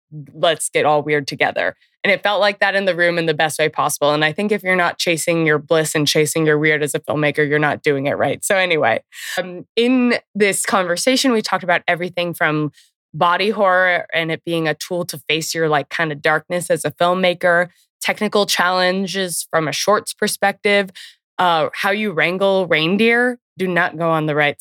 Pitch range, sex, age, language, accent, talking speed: 155-195 Hz, female, 20-39, English, American, 205 wpm